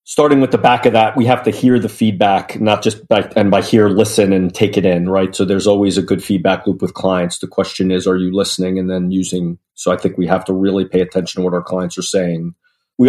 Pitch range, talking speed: 95-105 Hz, 265 wpm